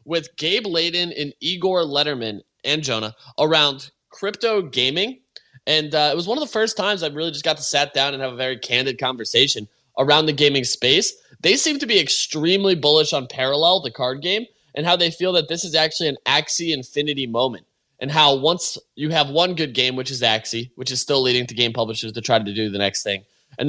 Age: 20-39